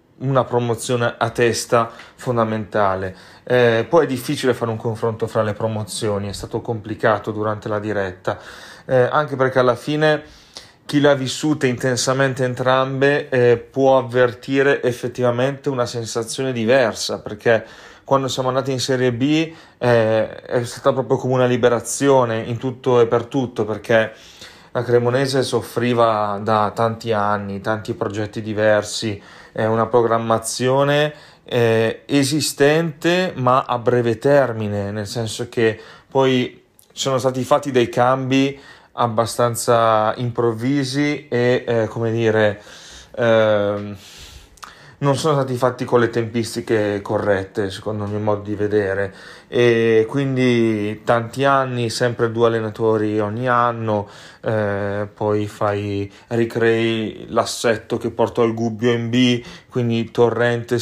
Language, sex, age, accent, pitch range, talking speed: Italian, male, 30-49, native, 110-130 Hz, 125 wpm